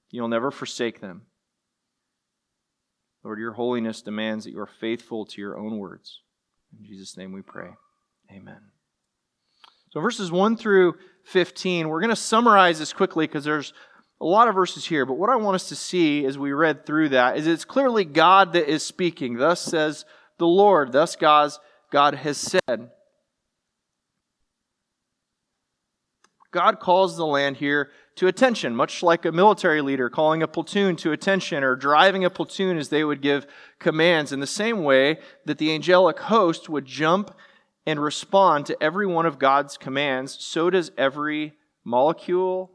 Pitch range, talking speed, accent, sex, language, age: 140-185 Hz, 160 wpm, American, male, English, 30-49